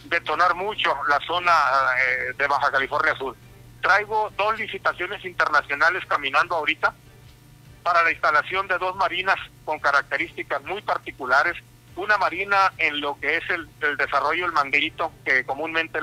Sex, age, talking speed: male, 40-59, 140 wpm